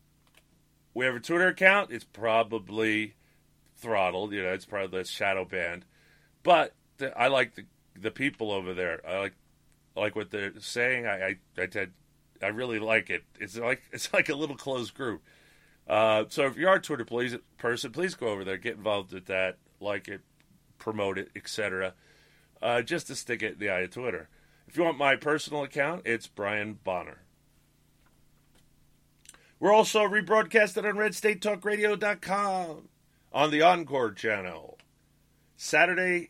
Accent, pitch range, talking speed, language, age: American, 110-160 Hz, 160 wpm, English, 40-59